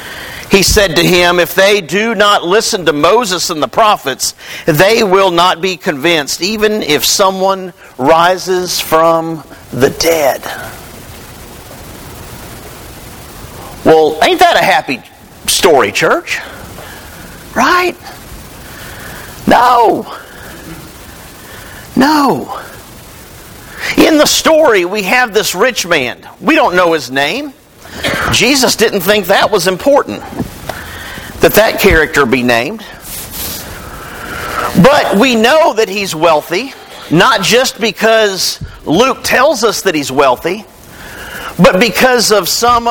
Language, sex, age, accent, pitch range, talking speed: English, male, 50-69, American, 170-220 Hz, 110 wpm